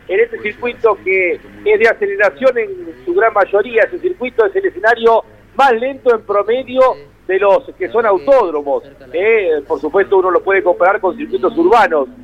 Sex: male